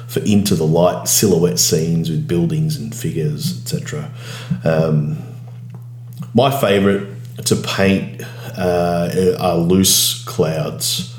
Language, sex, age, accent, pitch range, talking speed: English, male, 30-49, Australian, 90-120 Hz, 100 wpm